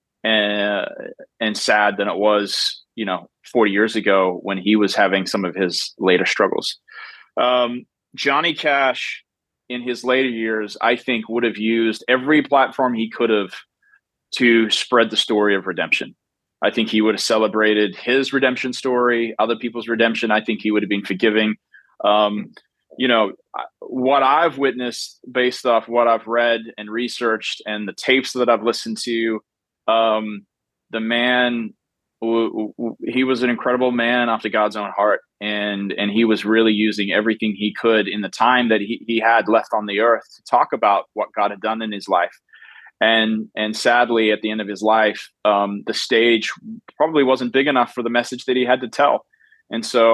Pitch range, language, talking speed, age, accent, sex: 105-120 Hz, English, 185 wpm, 30-49, American, male